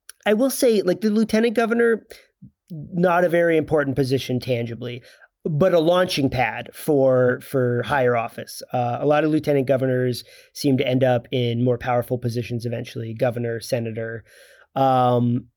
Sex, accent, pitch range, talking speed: male, American, 130-180 Hz, 150 wpm